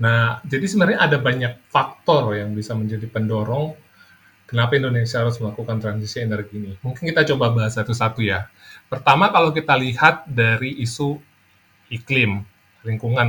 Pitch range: 105-130 Hz